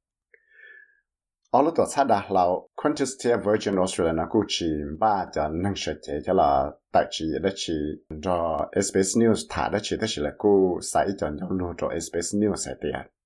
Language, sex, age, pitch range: English, male, 60-79, 80-115 Hz